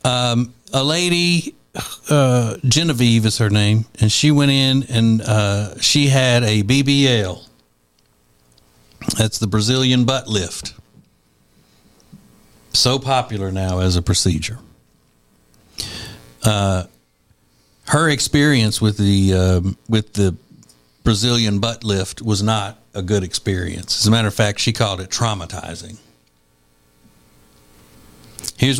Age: 60-79